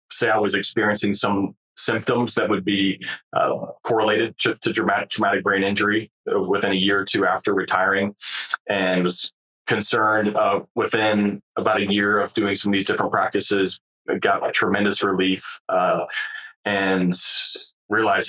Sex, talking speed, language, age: male, 150 wpm, English, 20-39